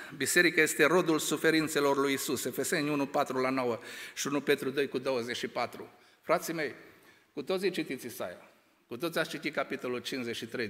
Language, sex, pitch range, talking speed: Romanian, male, 125-155 Hz, 145 wpm